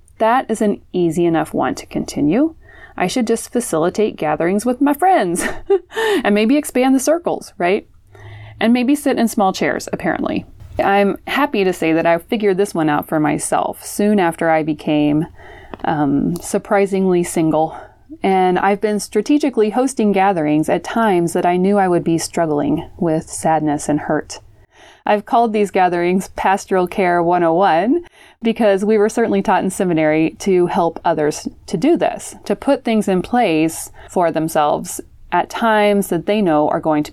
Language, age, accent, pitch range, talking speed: English, 30-49, American, 165-225 Hz, 165 wpm